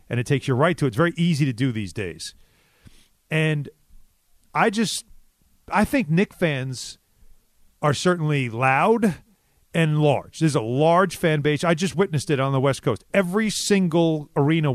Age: 40-59